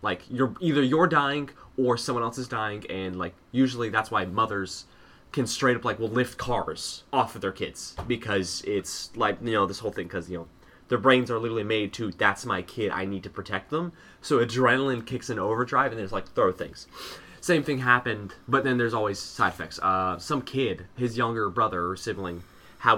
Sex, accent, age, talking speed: male, American, 20-39, 210 wpm